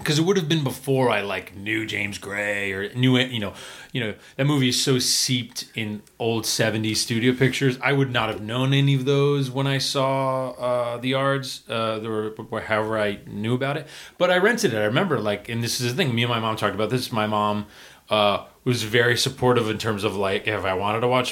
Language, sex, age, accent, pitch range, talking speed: English, male, 30-49, American, 110-135 Hz, 235 wpm